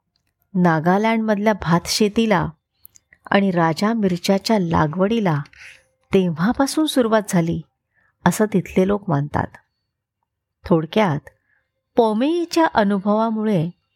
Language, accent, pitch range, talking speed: Marathi, native, 170-220 Hz, 70 wpm